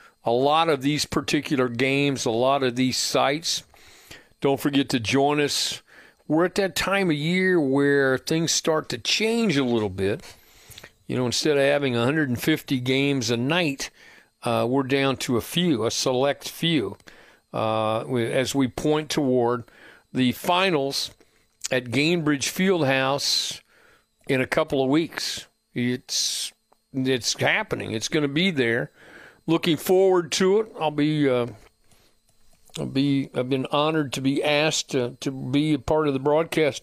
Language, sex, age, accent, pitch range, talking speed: English, male, 50-69, American, 130-160 Hz, 155 wpm